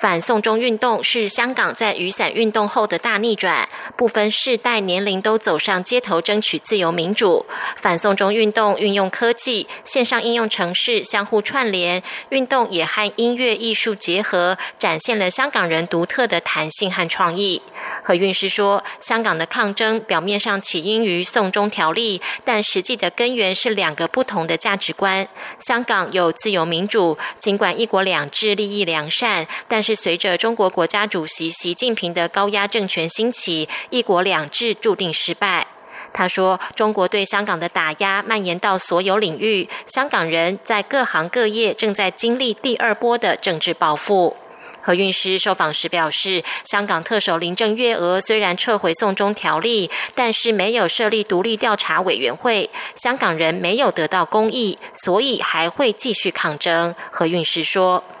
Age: 20-39